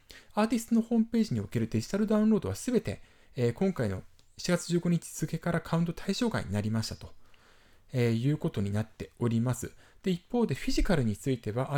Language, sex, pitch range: Japanese, male, 105-175 Hz